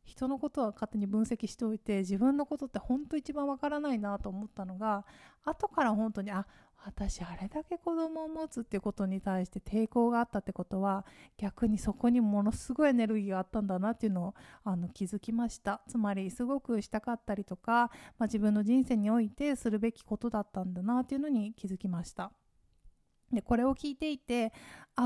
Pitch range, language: 205-260 Hz, Japanese